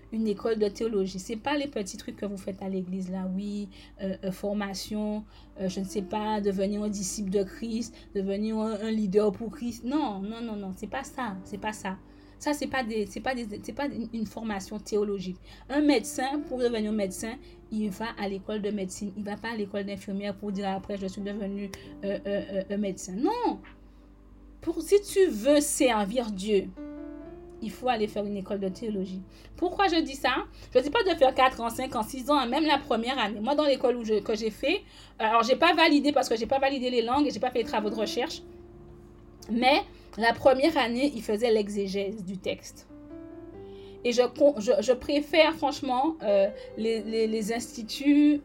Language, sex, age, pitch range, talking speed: French, female, 30-49, 205-275 Hz, 215 wpm